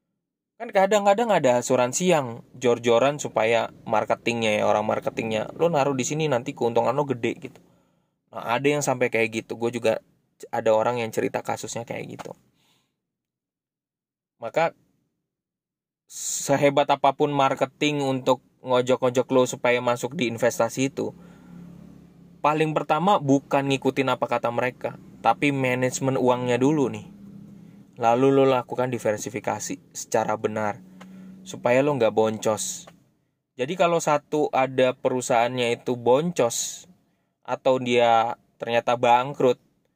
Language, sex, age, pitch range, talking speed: Indonesian, male, 20-39, 120-150 Hz, 120 wpm